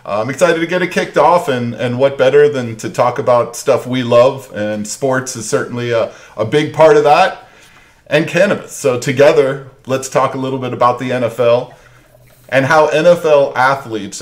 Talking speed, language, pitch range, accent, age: 185 wpm, English, 110-140 Hz, American, 40-59